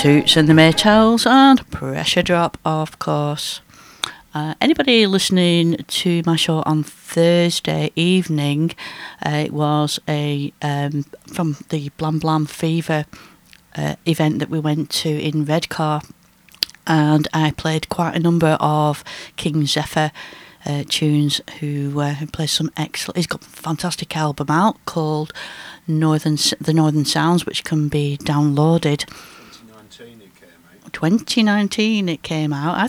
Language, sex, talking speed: English, female, 135 wpm